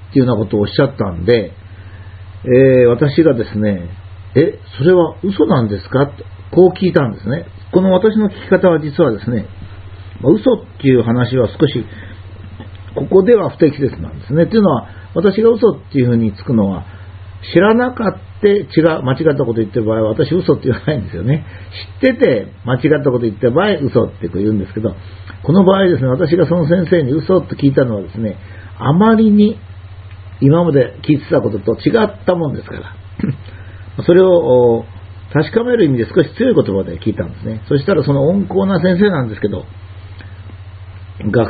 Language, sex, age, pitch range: Japanese, male, 50-69, 95-155 Hz